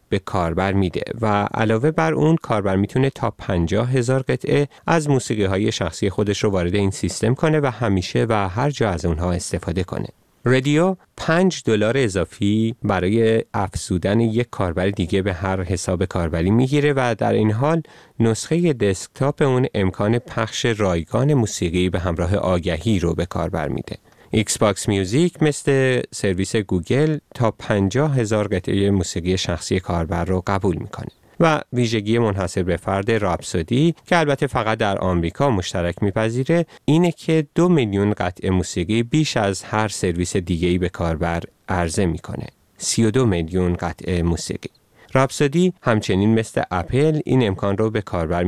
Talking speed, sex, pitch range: 150 wpm, male, 90-130 Hz